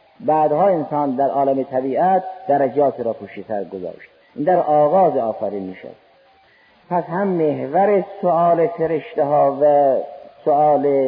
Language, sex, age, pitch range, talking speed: Persian, male, 50-69, 135-180 Hz, 130 wpm